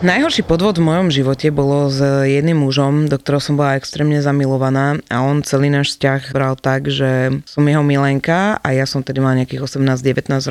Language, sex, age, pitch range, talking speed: Slovak, female, 20-39, 130-155 Hz, 190 wpm